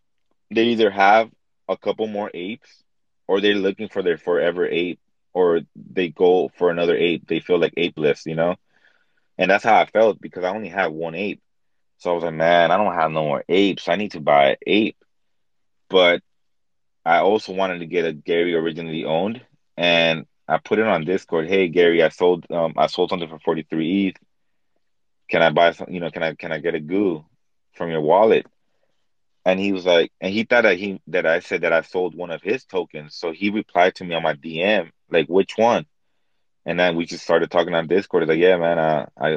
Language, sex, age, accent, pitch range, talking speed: English, male, 20-39, American, 80-100 Hz, 215 wpm